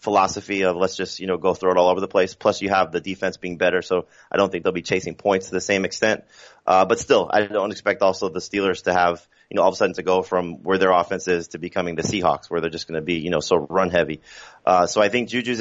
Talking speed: 290 wpm